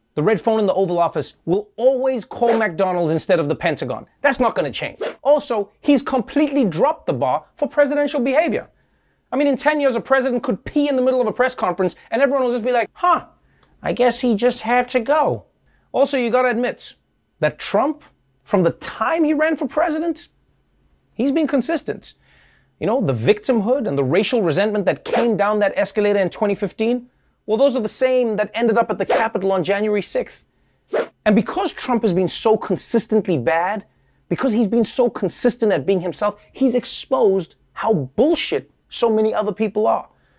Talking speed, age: 190 wpm, 30-49